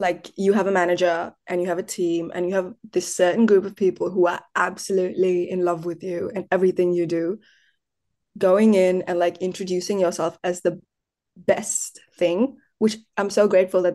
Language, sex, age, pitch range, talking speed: English, female, 20-39, 180-210 Hz, 190 wpm